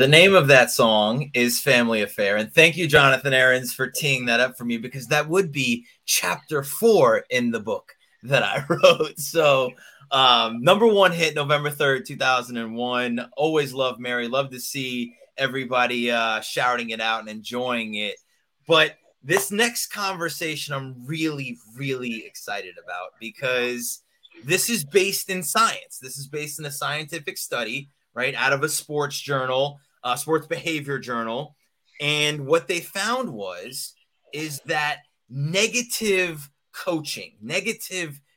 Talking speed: 150 wpm